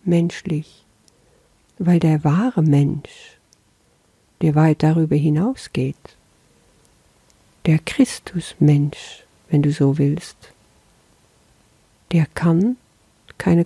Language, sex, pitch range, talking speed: German, female, 150-185 Hz, 80 wpm